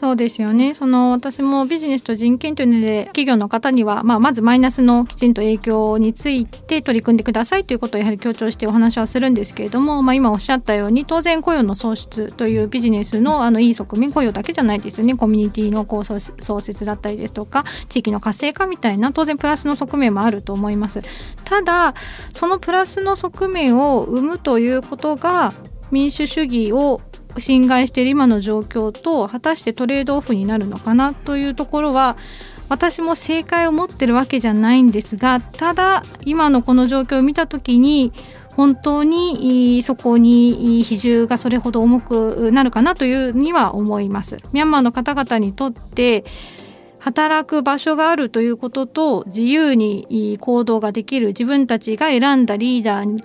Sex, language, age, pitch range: female, Japanese, 20-39, 225-280 Hz